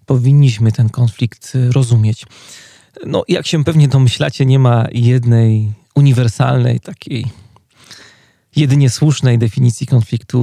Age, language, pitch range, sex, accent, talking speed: 30-49, Polish, 120-140 Hz, male, native, 100 wpm